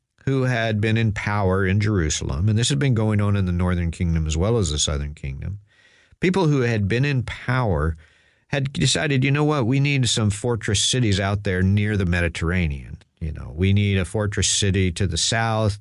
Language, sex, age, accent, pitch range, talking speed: English, male, 50-69, American, 90-110 Hz, 205 wpm